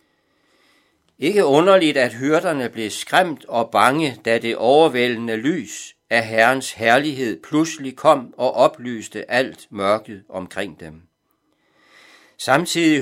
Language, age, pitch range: Danish, 60-79, 110-155 Hz